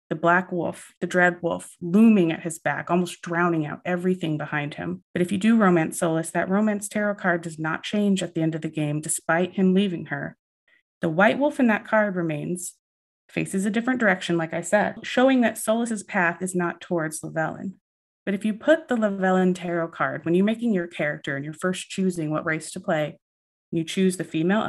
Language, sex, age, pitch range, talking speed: English, female, 30-49, 160-205 Hz, 210 wpm